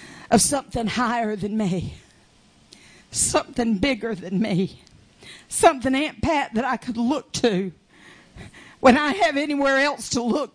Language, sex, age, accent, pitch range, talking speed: English, female, 50-69, American, 230-315 Hz, 135 wpm